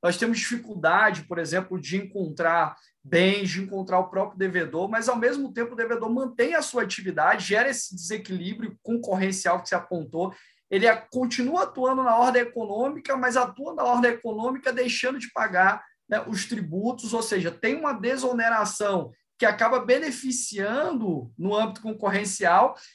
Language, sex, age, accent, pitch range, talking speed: Portuguese, male, 20-39, Brazilian, 195-255 Hz, 150 wpm